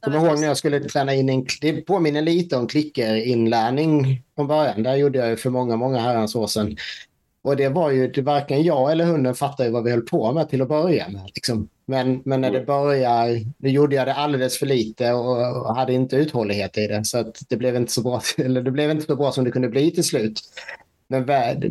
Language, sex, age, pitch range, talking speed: English, male, 30-49, 115-145 Hz, 225 wpm